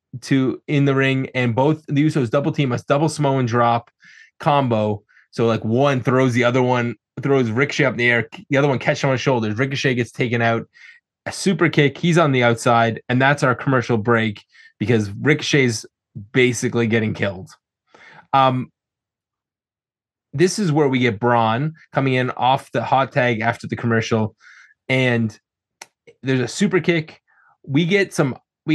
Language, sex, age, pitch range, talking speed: English, male, 20-39, 125-155 Hz, 170 wpm